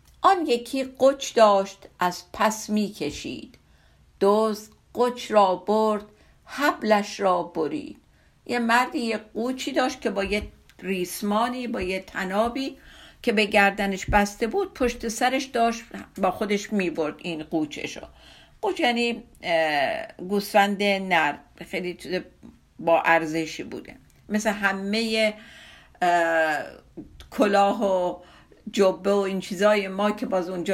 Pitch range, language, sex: 185-240 Hz, Persian, female